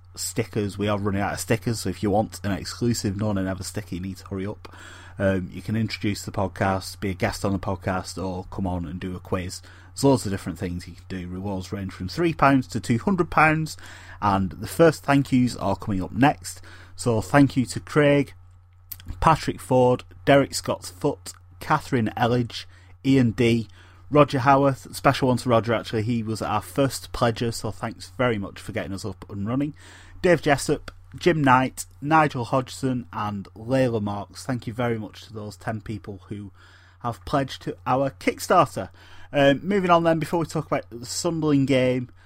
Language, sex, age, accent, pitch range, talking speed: English, male, 30-49, British, 95-130 Hz, 190 wpm